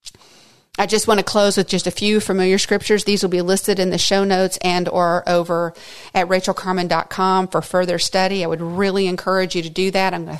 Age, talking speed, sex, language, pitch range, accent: 40-59, 215 wpm, female, English, 170-195 Hz, American